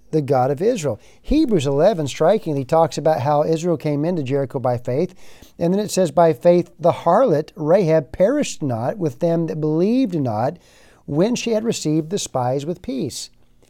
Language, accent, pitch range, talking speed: English, American, 130-170 Hz, 175 wpm